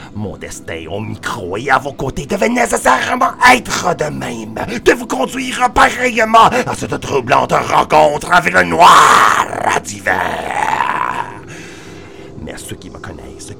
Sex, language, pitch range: male, English, 165-250 Hz